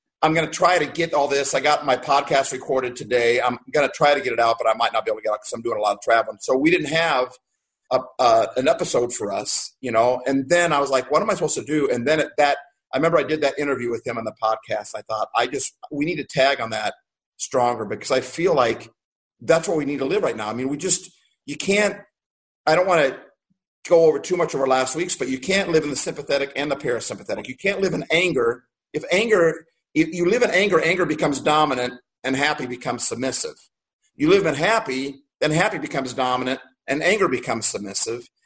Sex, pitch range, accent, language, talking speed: male, 130-175 Hz, American, English, 245 wpm